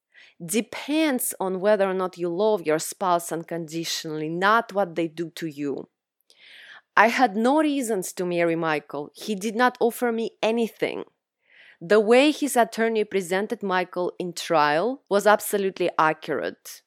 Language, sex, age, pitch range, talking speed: English, female, 30-49, 165-225 Hz, 140 wpm